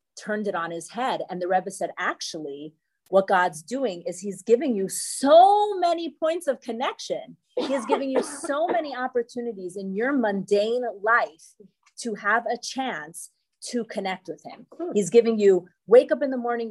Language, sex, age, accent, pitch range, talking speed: English, female, 30-49, American, 180-235 Hz, 170 wpm